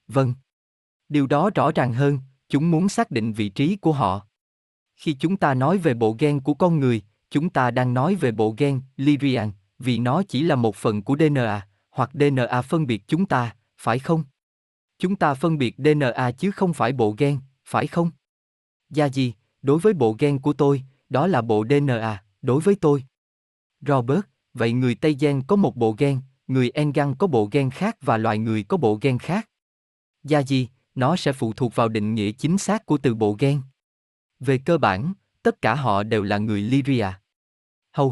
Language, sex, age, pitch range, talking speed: Vietnamese, male, 20-39, 115-150 Hz, 195 wpm